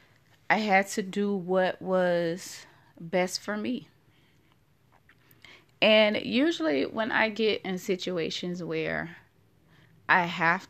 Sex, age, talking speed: female, 20-39, 105 wpm